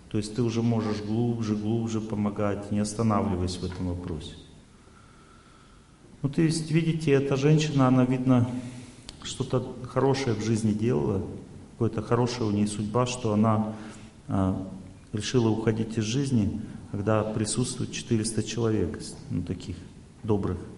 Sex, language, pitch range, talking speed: male, Russian, 100-125 Hz, 130 wpm